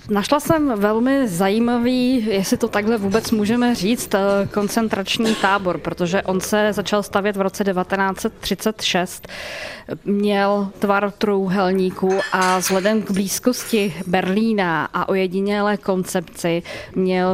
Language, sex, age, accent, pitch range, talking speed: Czech, female, 20-39, native, 180-210 Hz, 110 wpm